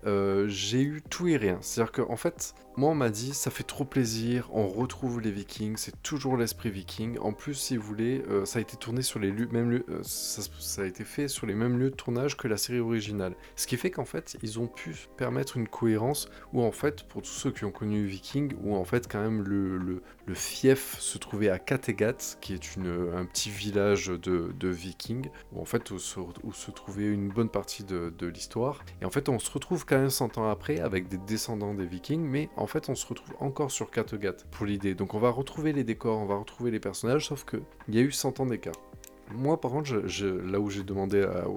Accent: French